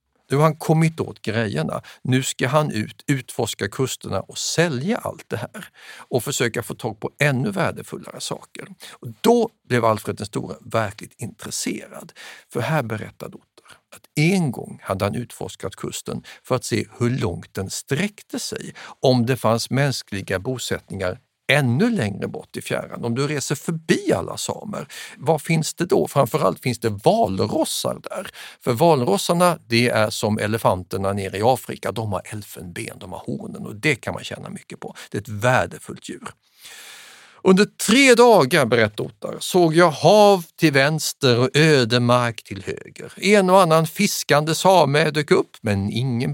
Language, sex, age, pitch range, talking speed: Swedish, male, 50-69, 110-160 Hz, 160 wpm